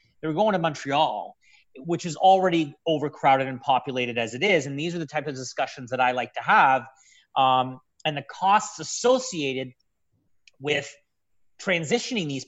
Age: 30-49